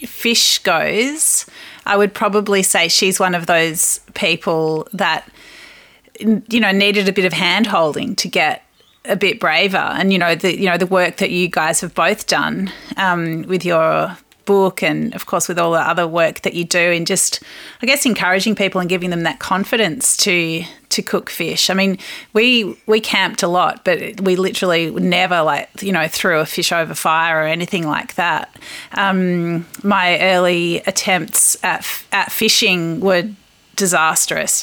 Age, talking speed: 30-49, 175 wpm